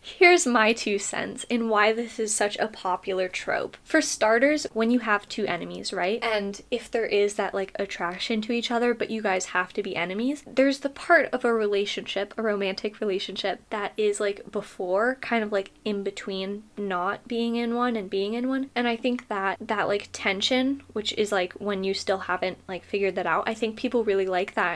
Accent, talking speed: American, 210 wpm